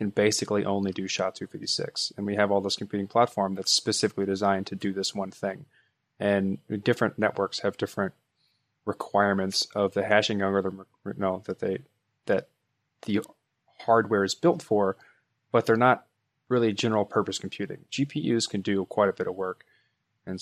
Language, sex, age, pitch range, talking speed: English, male, 20-39, 100-115 Hz, 165 wpm